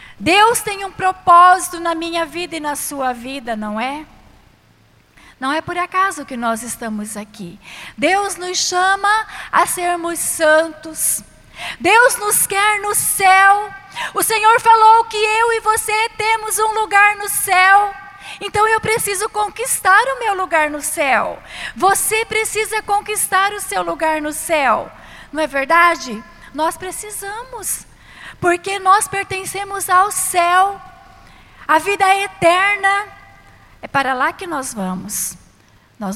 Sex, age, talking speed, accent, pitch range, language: female, 20-39, 135 wpm, Brazilian, 300-400 Hz, Portuguese